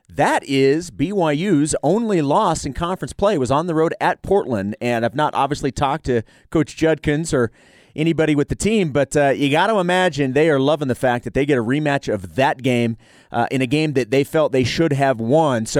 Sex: male